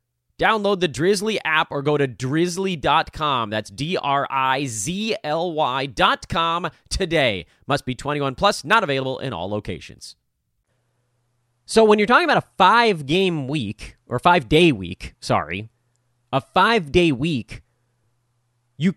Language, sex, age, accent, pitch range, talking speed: English, male, 30-49, American, 120-170 Hz, 120 wpm